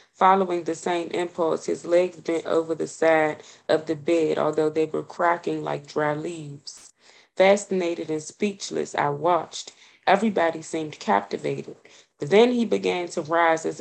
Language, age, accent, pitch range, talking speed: English, 20-39, American, 155-180 Hz, 150 wpm